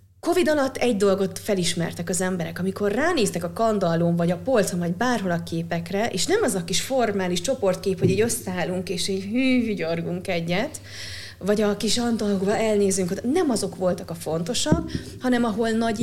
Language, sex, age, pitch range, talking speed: Hungarian, female, 30-49, 180-250 Hz, 170 wpm